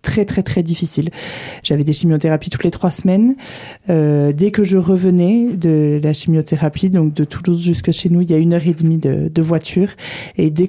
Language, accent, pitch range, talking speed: French, French, 155-185 Hz, 210 wpm